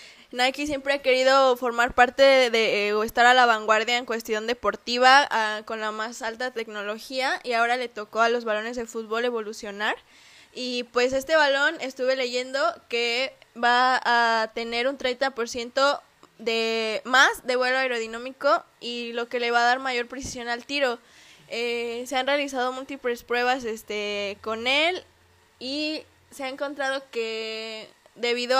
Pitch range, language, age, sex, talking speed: 230-265 Hz, Spanish, 10-29, female, 160 wpm